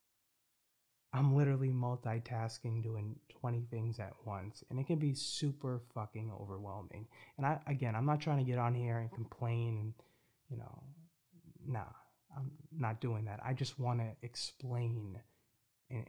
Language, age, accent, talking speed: English, 30-49, American, 150 wpm